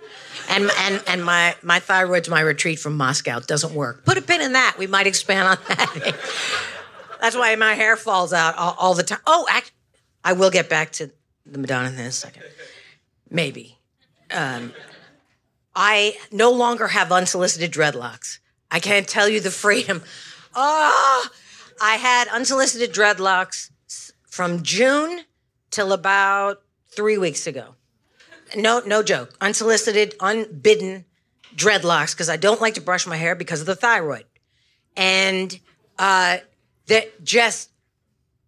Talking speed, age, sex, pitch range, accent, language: 145 wpm, 50-69, female, 175-225 Hz, American, English